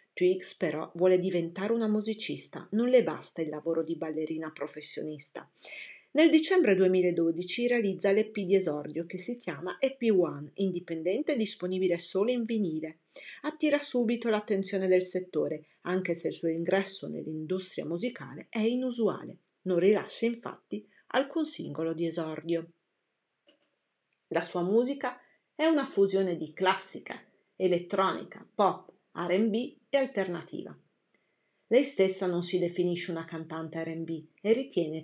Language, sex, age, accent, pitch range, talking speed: Italian, female, 40-59, native, 165-225 Hz, 130 wpm